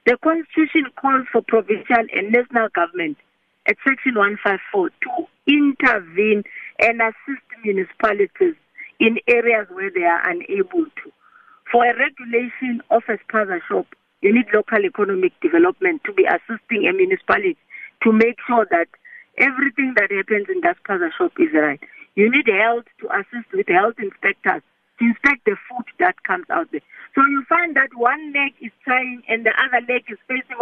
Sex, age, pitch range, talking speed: female, 50-69, 215-350 Hz, 165 wpm